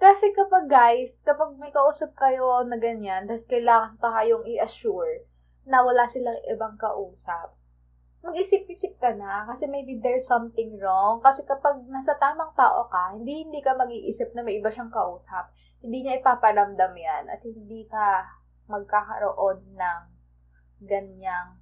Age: 20-39